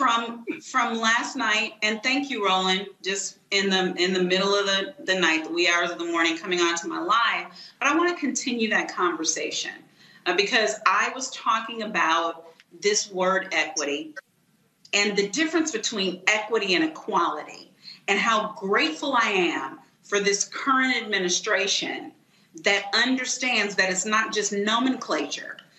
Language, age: English, 40-59